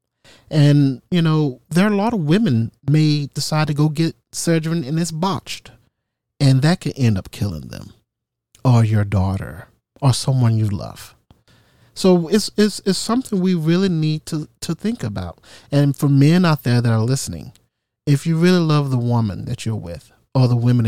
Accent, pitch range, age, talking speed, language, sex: American, 110-145 Hz, 40-59, 180 wpm, English, male